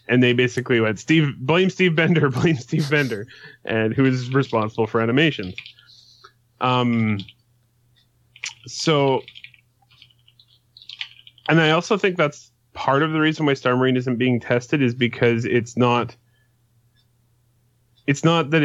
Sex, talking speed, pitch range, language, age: male, 130 wpm, 120-135 Hz, English, 30-49